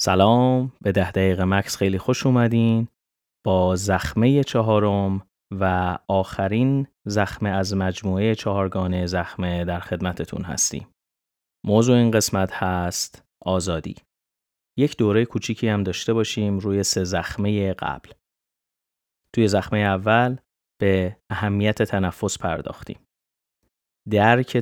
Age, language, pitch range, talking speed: 30-49, Persian, 90-110 Hz, 105 wpm